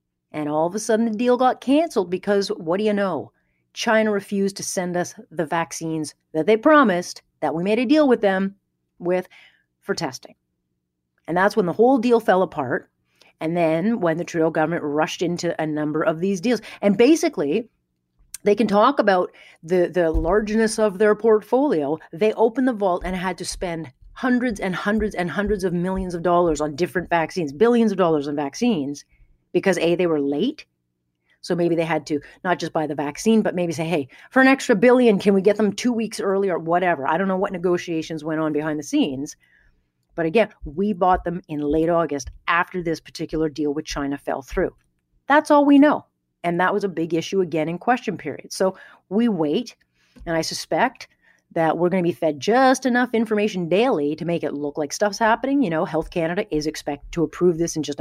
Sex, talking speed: female, 205 wpm